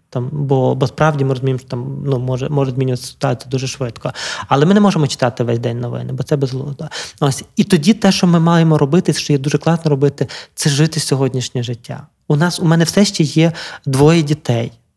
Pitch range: 135-160 Hz